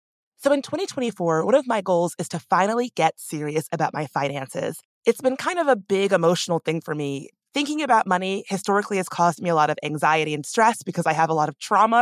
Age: 20-39